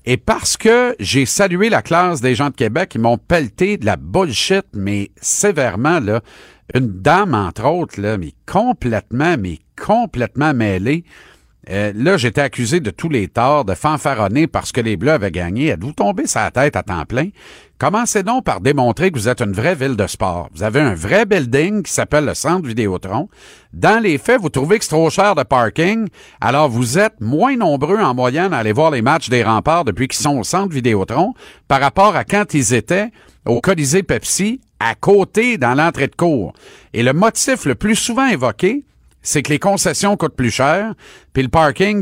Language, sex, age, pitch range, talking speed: French, male, 50-69, 120-180 Hz, 200 wpm